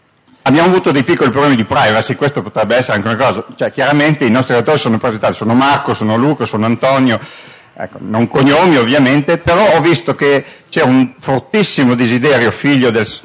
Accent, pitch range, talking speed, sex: native, 110-150 Hz, 170 wpm, male